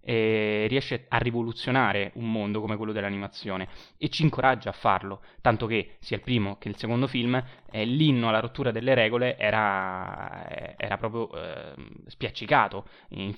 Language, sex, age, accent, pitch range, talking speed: Italian, male, 20-39, native, 105-120 Hz, 155 wpm